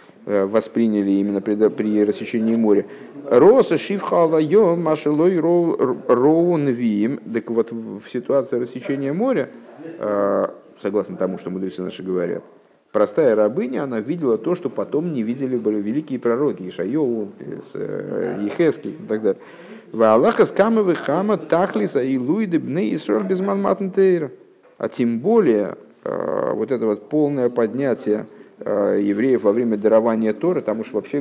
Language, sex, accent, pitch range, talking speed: Russian, male, native, 100-150 Hz, 95 wpm